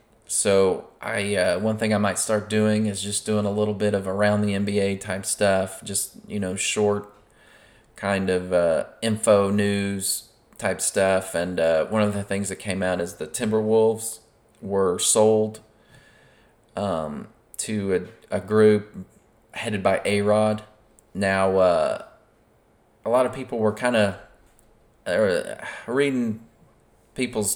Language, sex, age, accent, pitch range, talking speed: English, male, 30-49, American, 100-110 Hz, 145 wpm